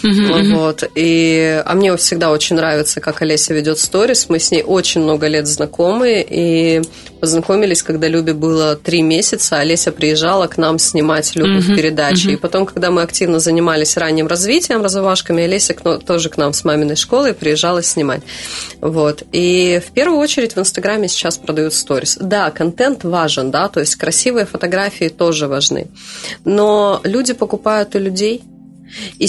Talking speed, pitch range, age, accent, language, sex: 150 wpm, 160-215 Hz, 30-49, native, Russian, female